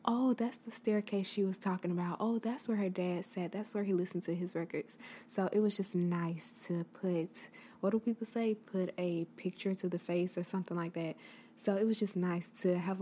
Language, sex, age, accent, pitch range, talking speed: English, female, 20-39, American, 175-200 Hz, 225 wpm